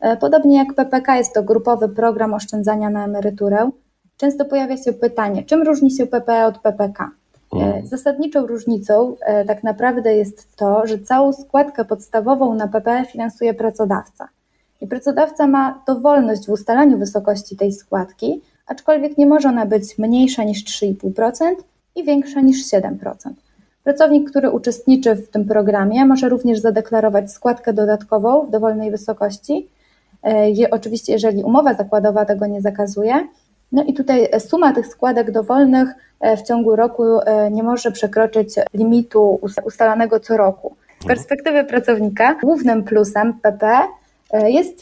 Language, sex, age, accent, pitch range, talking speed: Polish, female, 20-39, native, 210-270 Hz, 135 wpm